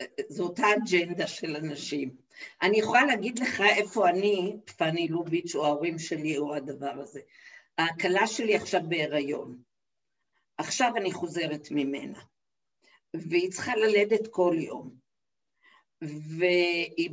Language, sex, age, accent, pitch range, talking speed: Hebrew, female, 50-69, native, 170-245 Hz, 115 wpm